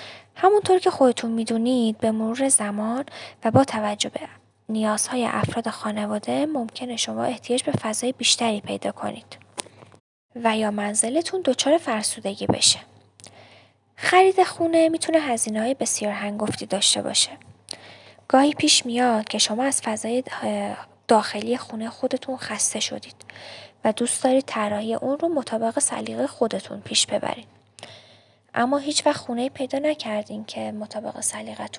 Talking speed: 130 wpm